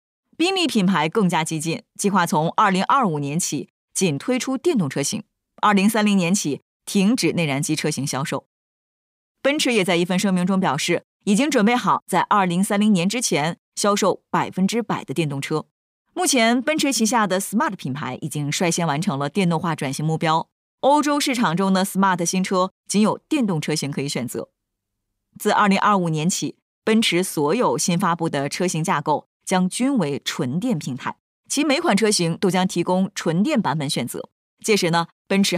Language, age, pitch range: Chinese, 20-39, 160-215 Hz